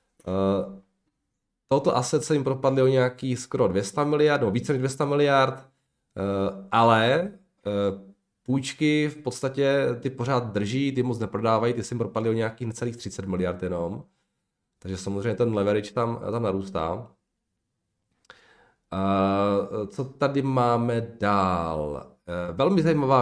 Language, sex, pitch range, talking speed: Czech, male, 105-135 Hz, 135 wpm